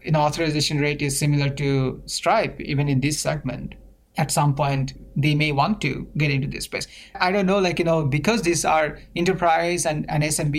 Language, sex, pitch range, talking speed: English, male, 135-165 Hz, 200 wpm